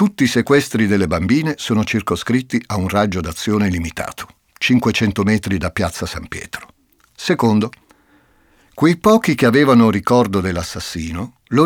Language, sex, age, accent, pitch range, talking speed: Italian, male, 50-69, native, 95-125 Hz, 135 wpm